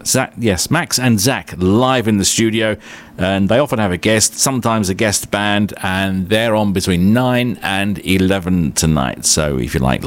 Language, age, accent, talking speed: English, 50-69, British, 185 wpm